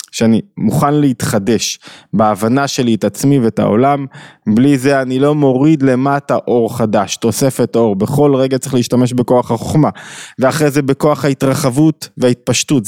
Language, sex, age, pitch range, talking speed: Hebrew, male, 20-39, 115-145 Hz, 140 wpm